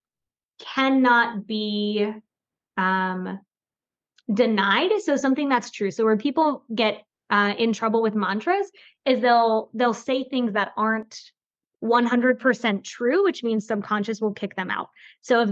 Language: English